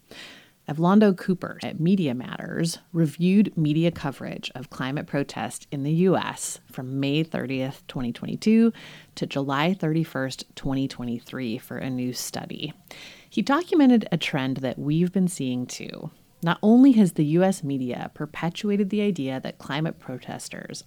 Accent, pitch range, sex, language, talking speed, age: American, 140-195 Hz, female, English, 135 wpm, 30-49